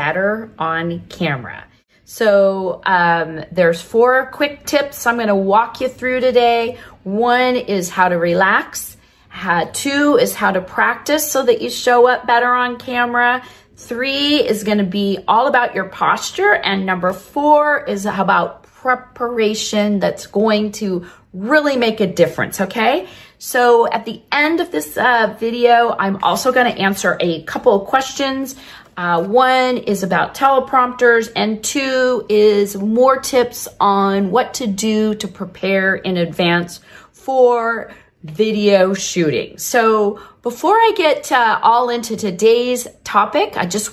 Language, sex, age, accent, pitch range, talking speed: English, female, 40-59, American, 190-255 Hz, 145 wpm